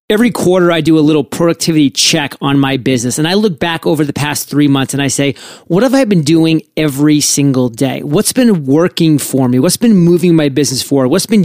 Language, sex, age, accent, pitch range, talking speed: English, male, 30-49, American, 140-185 Hz, 230 wpm